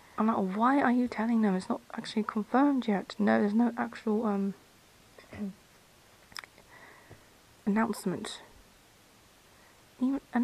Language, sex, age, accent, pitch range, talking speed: English, female, 20-39, British, 185-225 Hz, 110 wpm